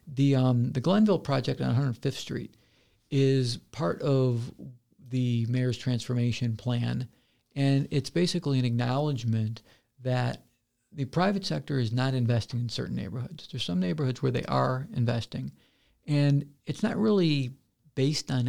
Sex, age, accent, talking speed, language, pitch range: male, 50-69, American, 140 wpm, English, 120-145 Hz